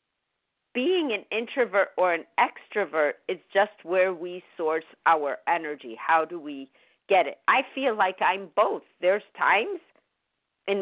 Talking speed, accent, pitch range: 145 wpm, American, 160-245 Hz